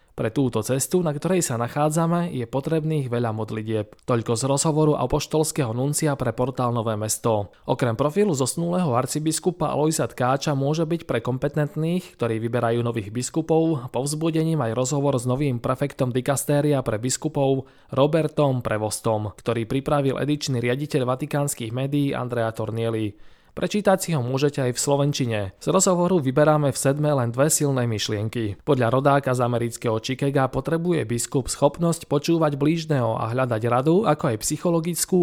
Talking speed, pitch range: 145 wpm, 120-150 Hz